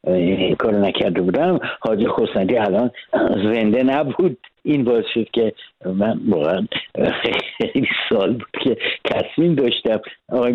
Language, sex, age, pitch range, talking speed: Persian, male, 60-79, 110-155 Hz, 120 wpm